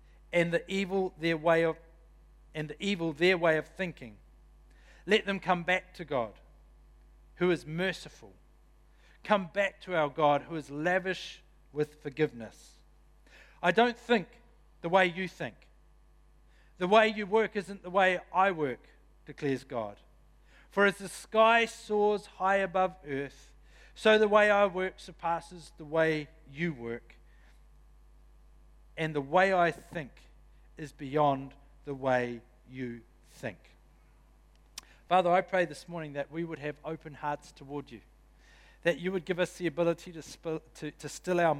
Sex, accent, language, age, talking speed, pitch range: male, Australian, English, 50-69, 150 wpm, 135-180 Hz